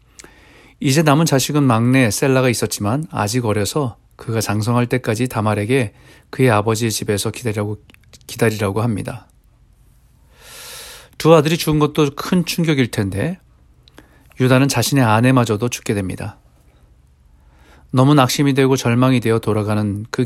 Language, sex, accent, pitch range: Korean, male, native, 110-135 Hz